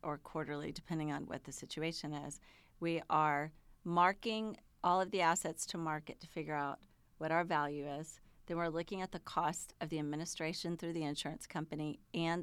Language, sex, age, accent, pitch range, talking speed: English, female, 40-59, American, 155-180 Hz, 185 wpm